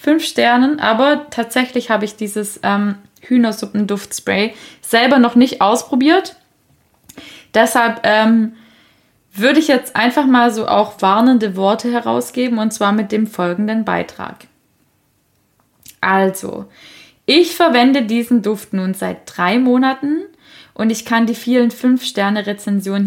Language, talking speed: German, 120 wpm